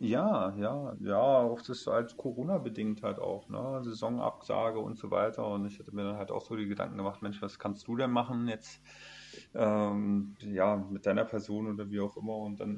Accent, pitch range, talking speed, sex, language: German, 95-110 Hz, 210 wpm, male, English